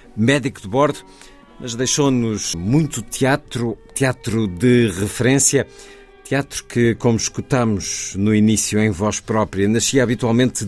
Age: 50-69